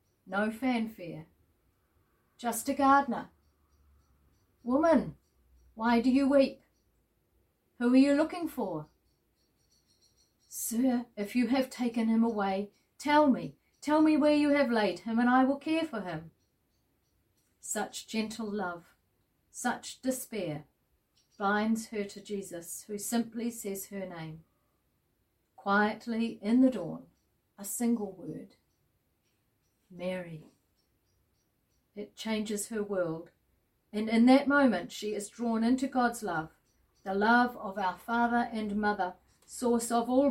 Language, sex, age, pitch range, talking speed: English, female, 40-59, 180-240 Hz, 125 wpm